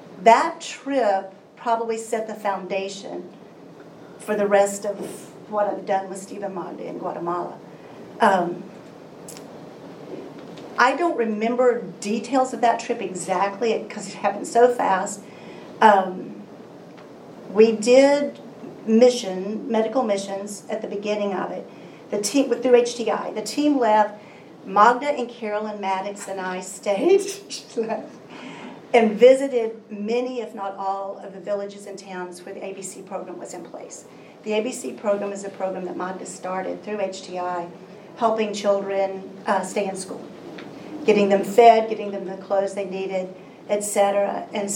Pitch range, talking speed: 195-230 Hz, 140 wpm